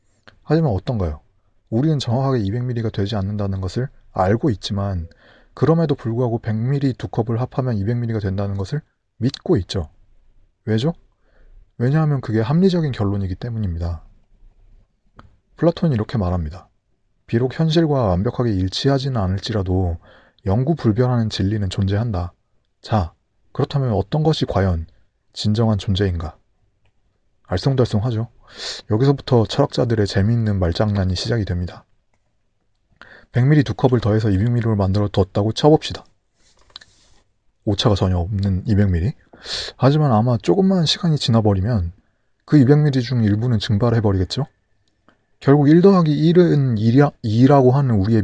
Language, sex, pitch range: Korean, male, 100-125 Hz